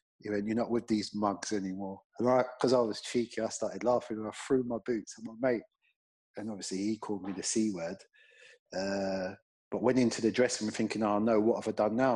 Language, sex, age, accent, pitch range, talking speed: English, male, 30-49, British, 100-115 Hz, 230 wpm